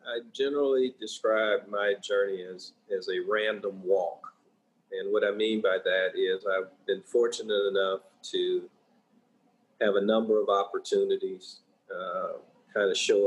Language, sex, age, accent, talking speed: English, male, 40-59, American, 140 wpm